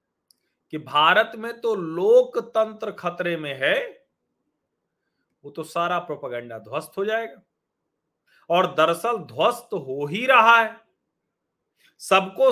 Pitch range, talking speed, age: 165-225 Hz, 110 wpm, 40-59